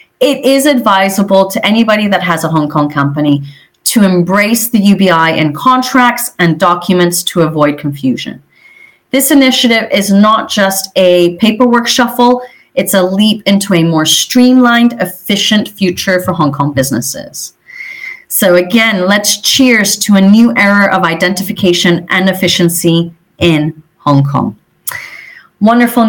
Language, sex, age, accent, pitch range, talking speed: English, female, 30-49, American, 170-235 Hz, 135 wpm